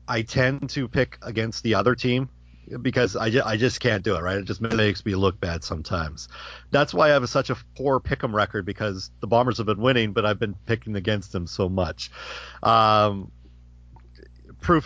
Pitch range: 90-125 Hz